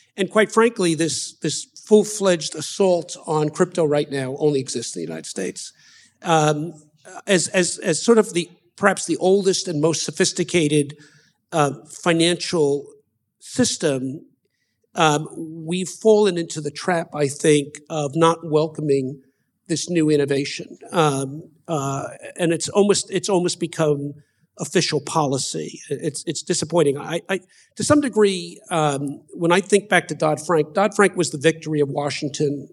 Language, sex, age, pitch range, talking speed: English, male, 50-69, 150-180 Hz, 145 wpm